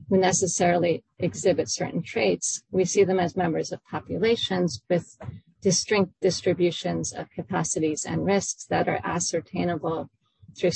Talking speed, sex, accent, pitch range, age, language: 130 wpm, female, American, 165-195 Hz, 40-59, English